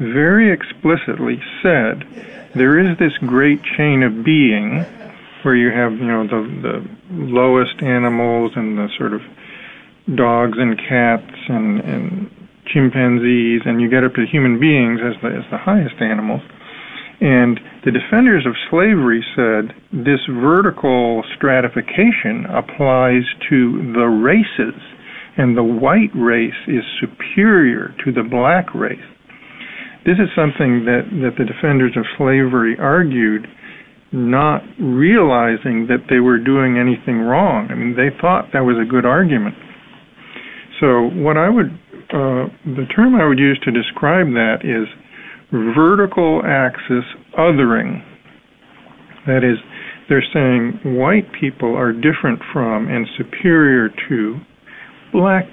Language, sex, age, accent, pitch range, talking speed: English, male, 50-69, American, 120-165 Hz, 135 wpm